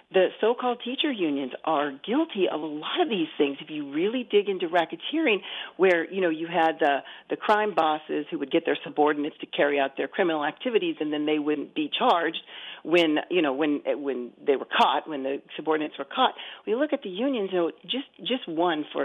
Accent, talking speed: American, 215 wpm